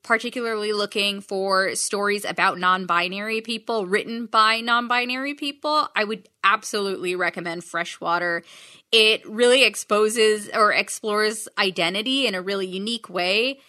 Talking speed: 120 wpm